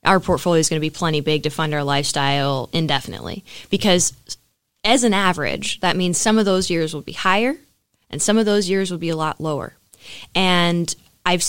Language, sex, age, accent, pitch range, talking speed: English, female, 20-39, American, 160-185 Hz, 200 wpm